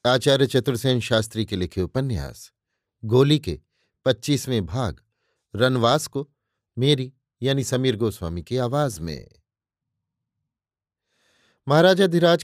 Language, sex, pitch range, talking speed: Hindi, male, 110-135 Hz, 95 wpm